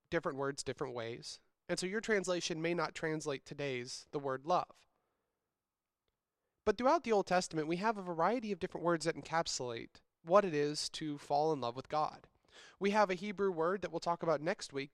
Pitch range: 150-200 Hz